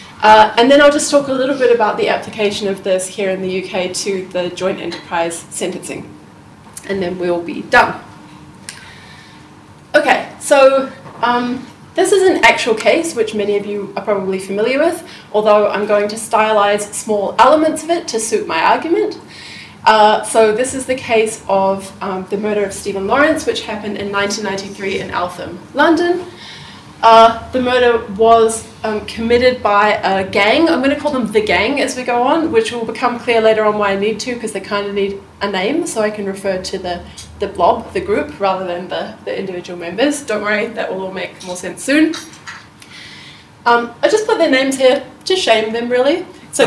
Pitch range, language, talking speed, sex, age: 200-255 Hz, English, 195 wpm, female, 20-39